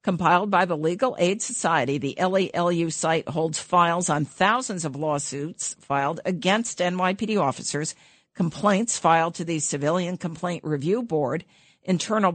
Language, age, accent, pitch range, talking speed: English, 50-69, American, 150-190 Hz, 135 wpm